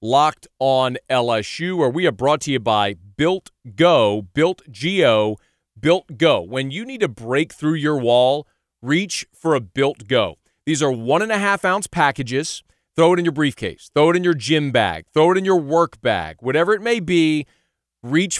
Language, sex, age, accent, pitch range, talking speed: English, male, 40-59, American, 135-170 Hz, 180 wpm